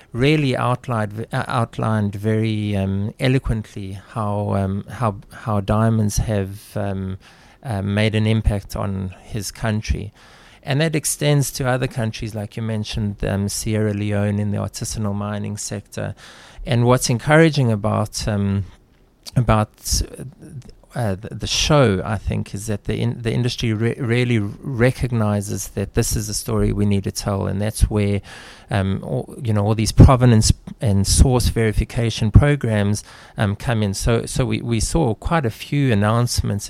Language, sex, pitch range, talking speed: English, male, 100-115 Hz, 155 wpm